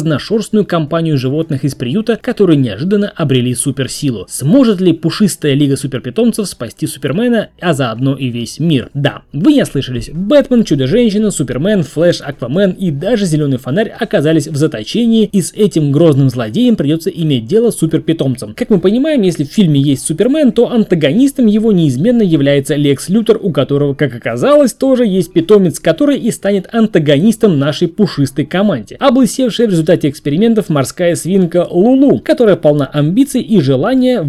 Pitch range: 145-225 Hz